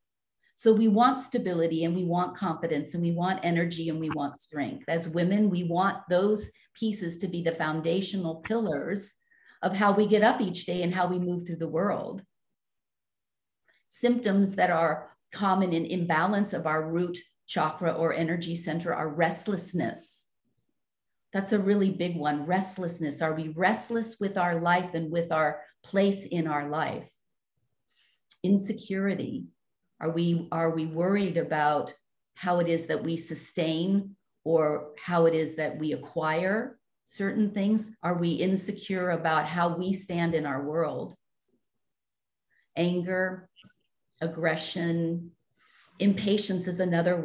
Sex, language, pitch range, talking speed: female, English, 165-195 Hz, 140 wpm